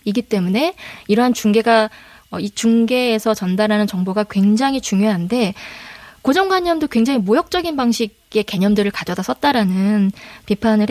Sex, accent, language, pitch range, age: female, native, Korean, 210-275 Hz, 20-39